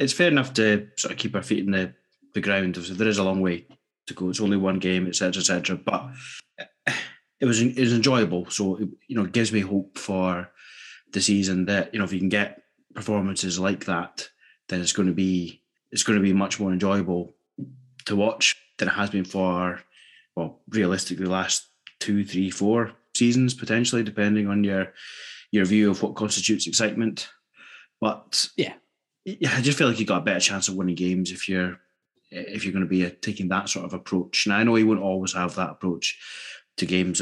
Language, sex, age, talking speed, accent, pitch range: English, male, 20-39, 210 wpm, British, 90-105 Hz